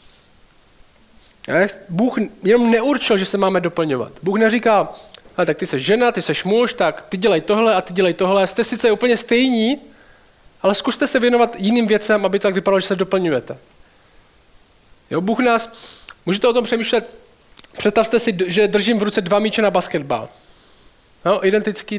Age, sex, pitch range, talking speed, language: 20-39, male, 180-220 Hz, 165 wpm, Czech